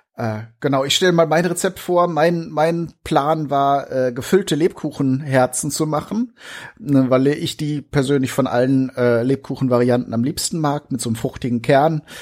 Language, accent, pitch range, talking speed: German, German, 120-155 Hz, 155 wpm